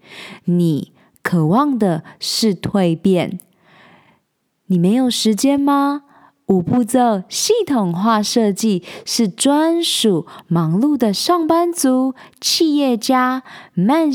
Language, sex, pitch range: Chinese, female, 195-280 Hz